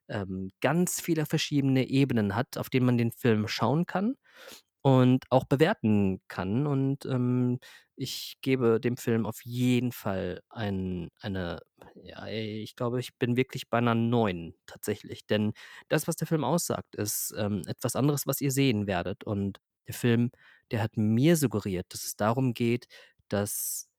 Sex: male